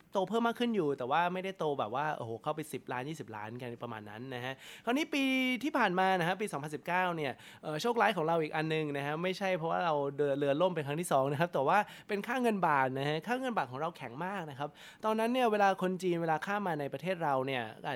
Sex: male